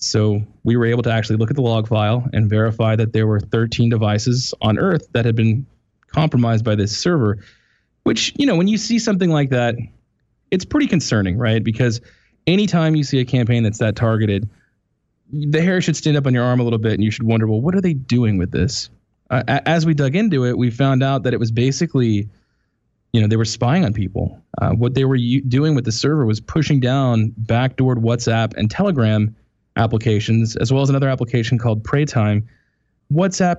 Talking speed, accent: 205 wpm, American